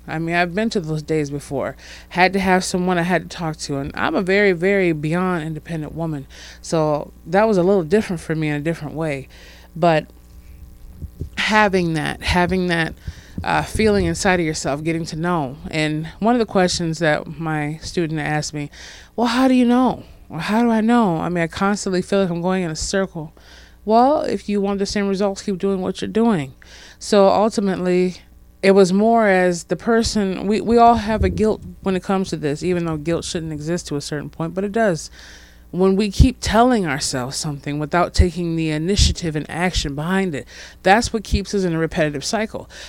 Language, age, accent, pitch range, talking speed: English, 20-39, American, 160-205 Hz, 205 wpm